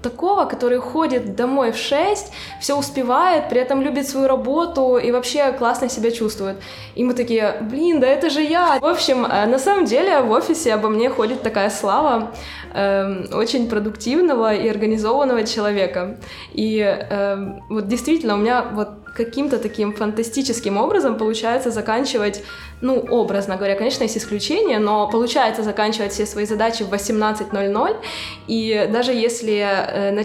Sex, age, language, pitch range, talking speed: female, 20-39, Russian, 210-265 Hz, 150 wpm